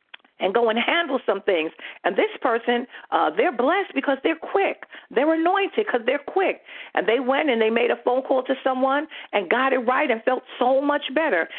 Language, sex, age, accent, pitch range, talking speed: English, female, 50-69, American, 225-315 Hz, 205 wpm